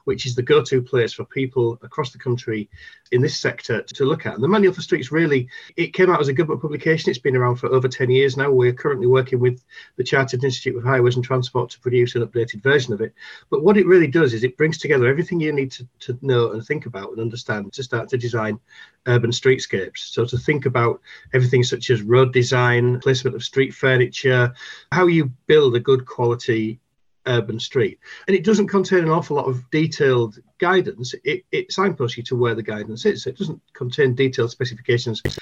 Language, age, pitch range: English, 40-59, 120-150 Hz